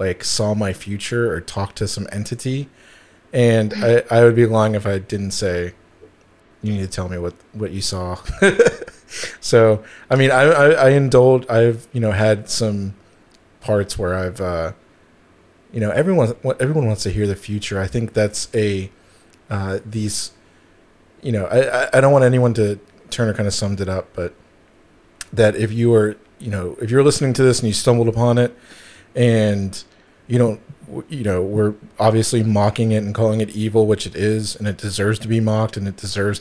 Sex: male